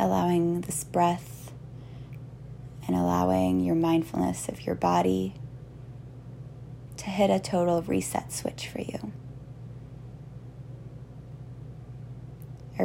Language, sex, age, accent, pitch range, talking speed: English, female, 20-39, American, 125-135 Hz, 90 wpm